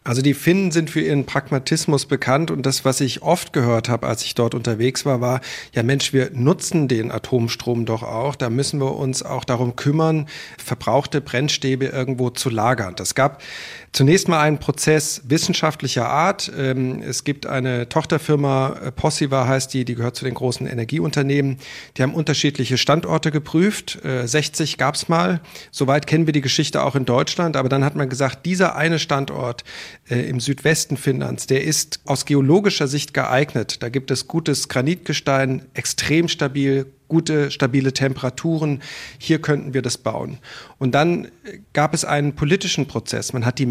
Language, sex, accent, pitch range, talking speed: German, male, German, 125-150 Hz, 165 wpm